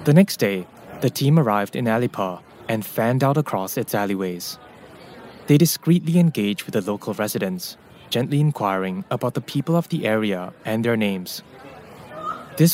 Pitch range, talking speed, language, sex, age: 105-150 Hz, 155 wpm, English, male, 20-39